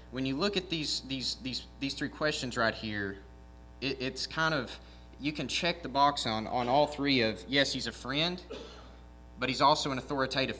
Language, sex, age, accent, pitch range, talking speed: English, male, 20-39, American, 110-135 Hz, 200 wpm